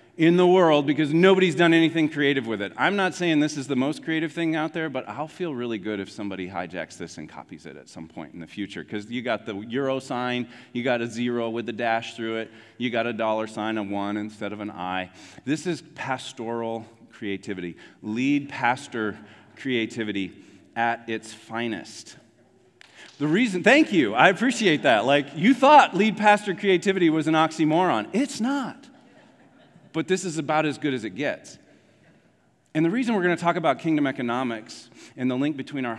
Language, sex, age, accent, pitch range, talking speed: English, male, 40-59, American, 110-155 Hz, 195 wpm